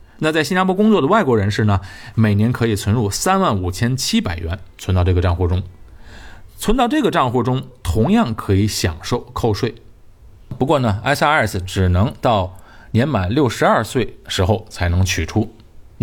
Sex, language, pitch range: male, Chinese, 95-125 Hz